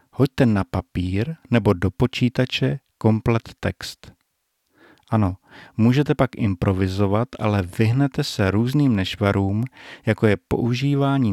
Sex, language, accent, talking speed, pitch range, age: male, Czech, native, 105 wpm, 100-130 Hz, 50-69